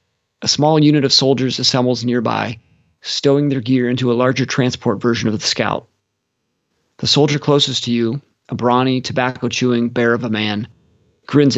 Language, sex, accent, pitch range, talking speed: English, male, American, 115-135 Hz, 160 wpm